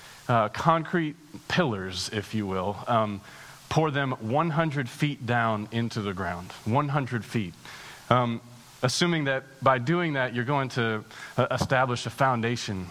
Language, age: English, 30-49